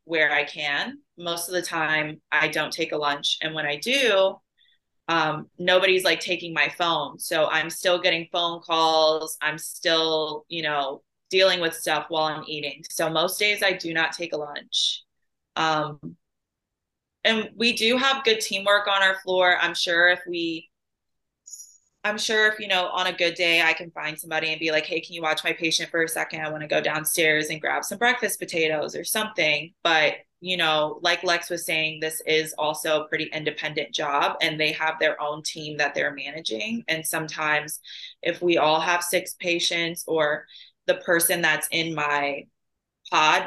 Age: 20-39